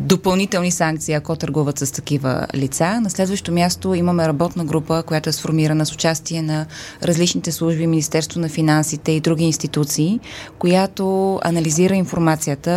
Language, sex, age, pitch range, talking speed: Bulgarian, female, 20-39, 160-180 Hz, 140 wpm